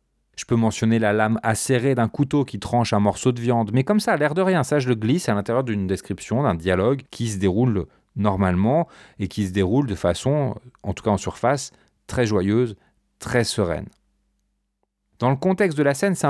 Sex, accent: male, French